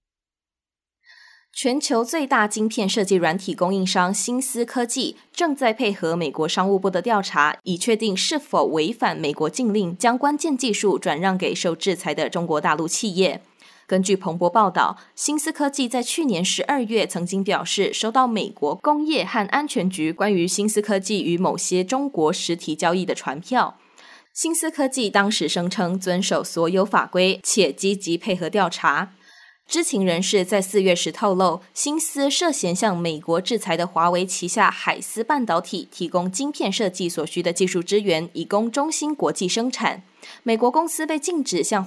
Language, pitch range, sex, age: Chinese, 180-245 Hz, female, 20-39